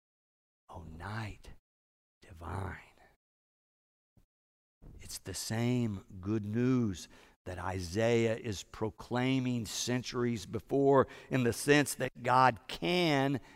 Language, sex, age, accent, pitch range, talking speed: English, male, 50-69, American, 120-180 Hz, 90 wpm